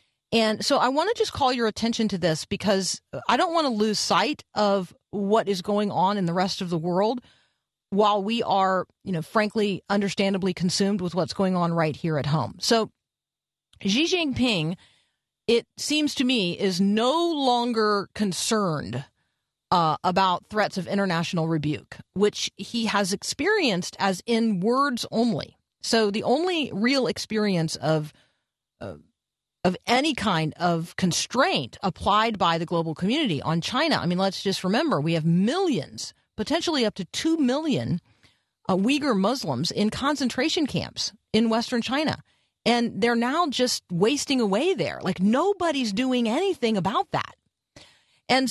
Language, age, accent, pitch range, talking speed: English, 40-59, American, 180-240 Hz, 155 wpm